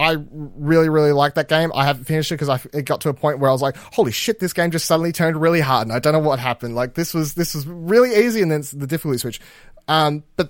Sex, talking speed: male, 280 wpm